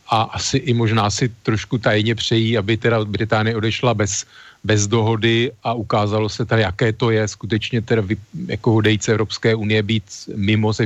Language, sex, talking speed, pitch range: Slovak, male, 170 wpm, 105-115 Hz